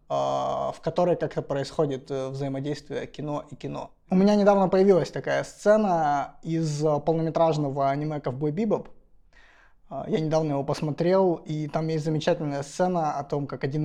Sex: male